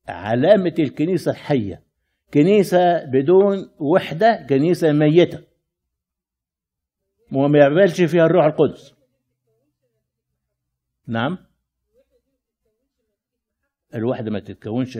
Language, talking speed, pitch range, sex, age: Arabic, 70 wpm, 105-155 Hz, male, 60-79